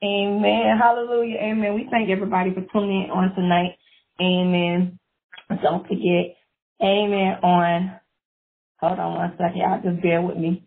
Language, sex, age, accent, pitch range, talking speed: English, female, 30-49, American, 180-215 Hz, 140 wpm